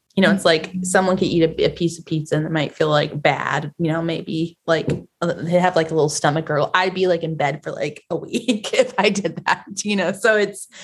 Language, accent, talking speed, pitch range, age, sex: English, American, 255 wpm, 155-185 Hz, 20-39, female